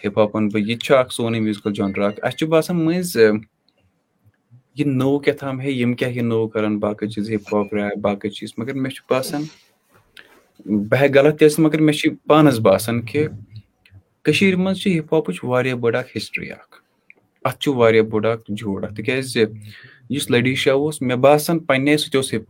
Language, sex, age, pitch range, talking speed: Urdu, male, 20-39, 105-140 Hz, 115 wpm